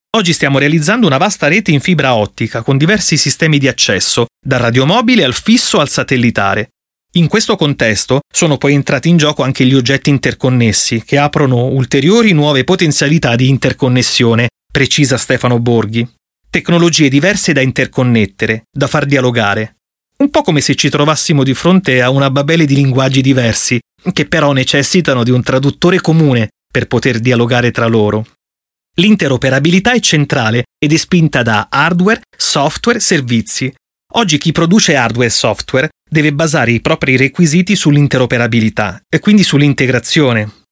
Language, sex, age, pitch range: Italian, male, 30-49, 125-165 Hz